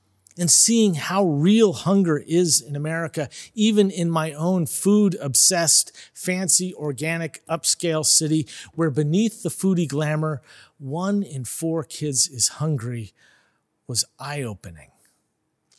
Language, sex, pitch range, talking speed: English, male, 140-175 Hz, 115 wpm